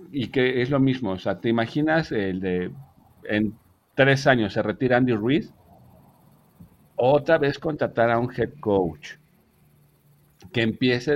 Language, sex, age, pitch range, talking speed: Spanish, male, 50-69, 95-135 Hz, 145 wpm